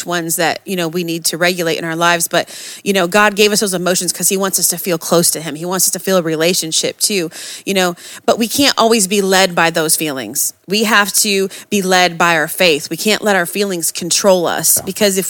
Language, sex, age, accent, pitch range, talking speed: English, female, 30-49, American, 175-205 Hz, 250 wpm